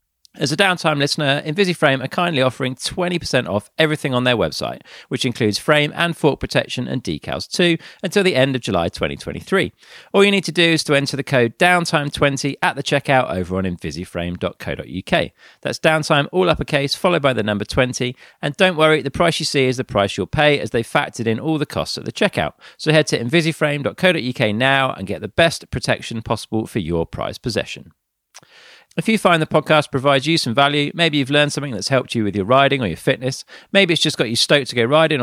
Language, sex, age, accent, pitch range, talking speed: English, male, 40-59, British, 115-155 Hz, 210 wpm